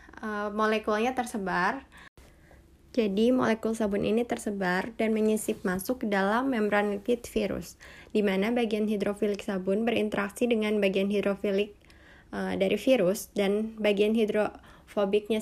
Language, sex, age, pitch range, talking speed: Indonesian, female, 20-39, 200-220 Hz, 115 wpm